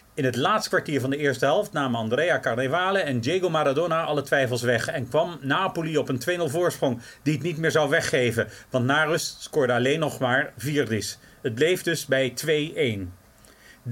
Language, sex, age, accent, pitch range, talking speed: Dutch, male, 40-59, Dutch, 130-180 Hz, 180 wpm